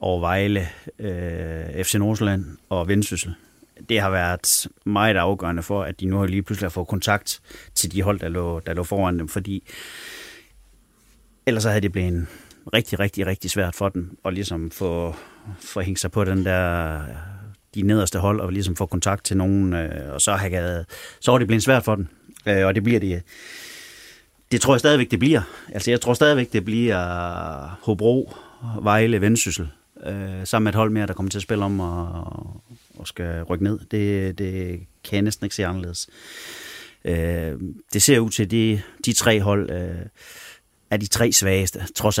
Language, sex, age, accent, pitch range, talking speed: Danish, male, 30-49, native, 90-105 Hz, 190 wpm